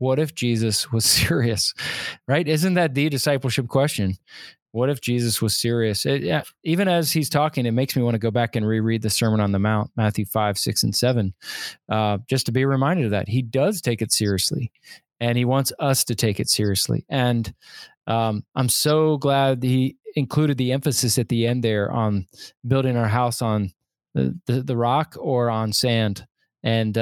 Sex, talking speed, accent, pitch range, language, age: male, 190 wpm, American, 115-150 Hz, English, 20-39